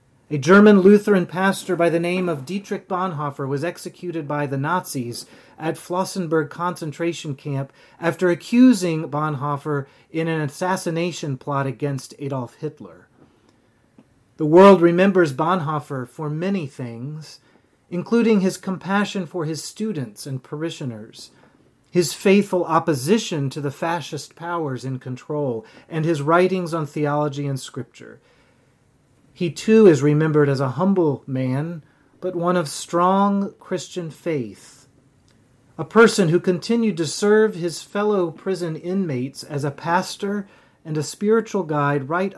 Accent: American